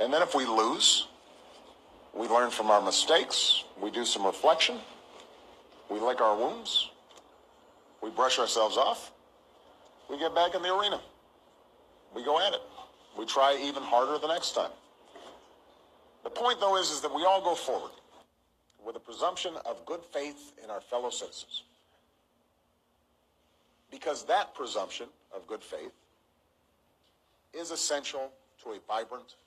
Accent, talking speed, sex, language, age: American, 145 wpm, male, English, 50-69